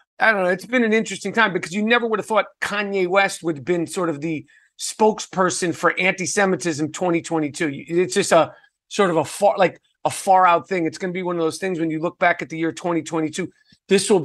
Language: English